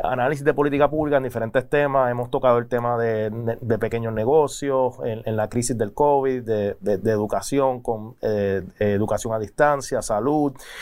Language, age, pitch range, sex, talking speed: Spanish, 30-49, 115-145 Hz, male, 170 wpm